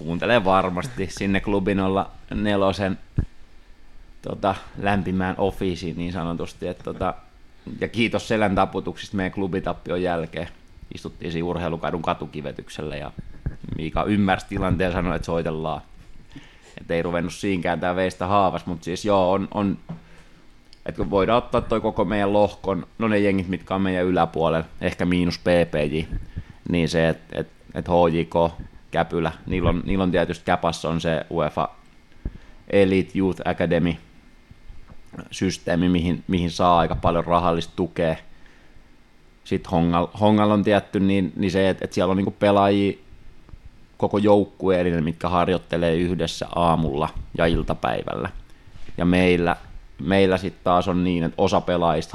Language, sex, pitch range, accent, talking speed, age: Finnish, male, 85-95 Hz, native, 135 wpm, 20-39